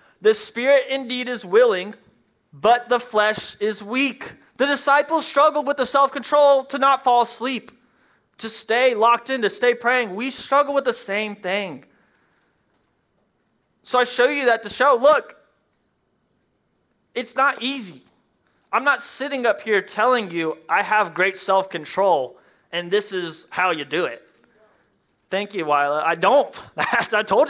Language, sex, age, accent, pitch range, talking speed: English, male, 20-39, American, 185-250 Hz, 150 wpm